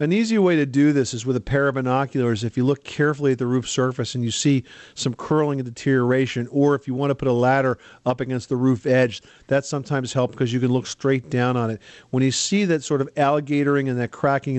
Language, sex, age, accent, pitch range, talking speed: English, male, 50-69, American, 125-145 Hz, 250 wpm